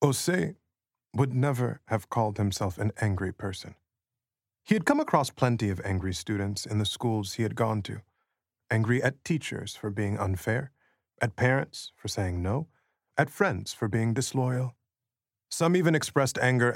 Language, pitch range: English, 105-135 Hz